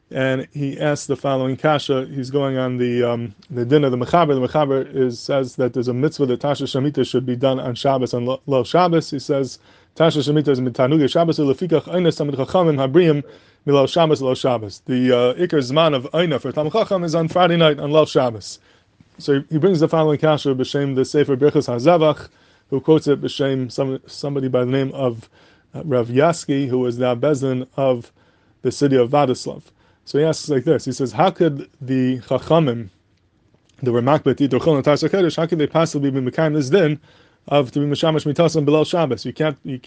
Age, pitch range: 20-39, 125-150 Hz